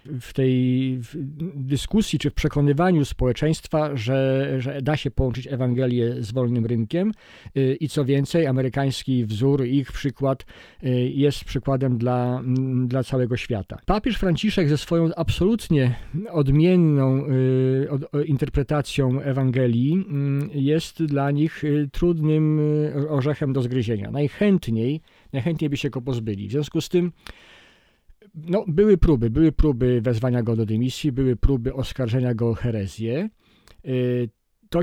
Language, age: Polish, 50-69